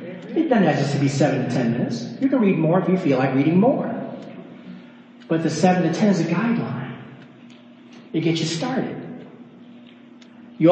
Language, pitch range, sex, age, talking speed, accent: English, 165-220 Hz, male, 40-59, 185 wpm, American